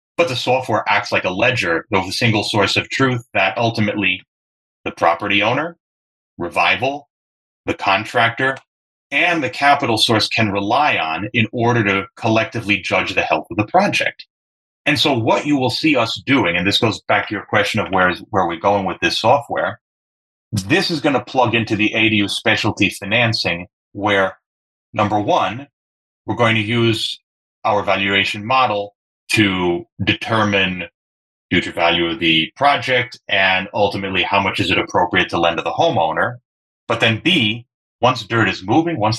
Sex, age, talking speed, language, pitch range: male, 30-49, 170 wpm, English, 95-120 Hz